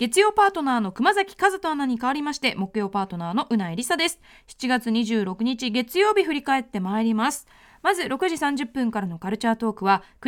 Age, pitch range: 20-39, 230-335 Hz